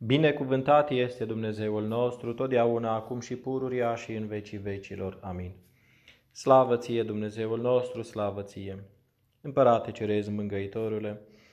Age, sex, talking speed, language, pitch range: 20-39, male, 115 wpm, Romanian, 100-120 Hz